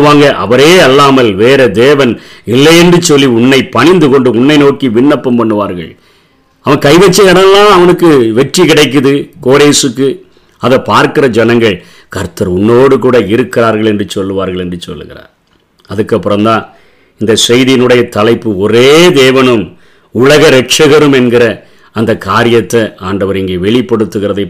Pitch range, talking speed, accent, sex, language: 115-150 Hz, 80 wpm, native, male, Tamil